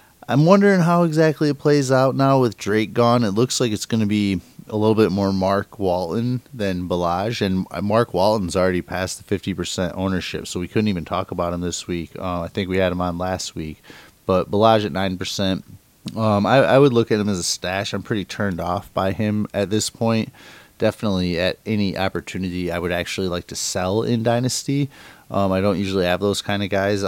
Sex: male